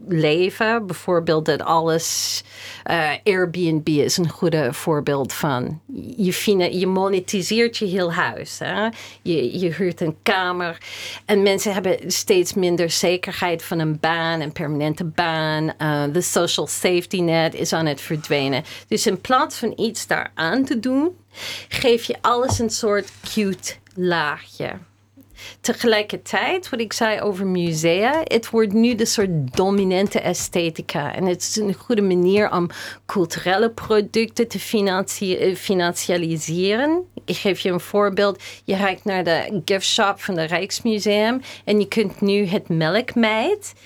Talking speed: 140 wpm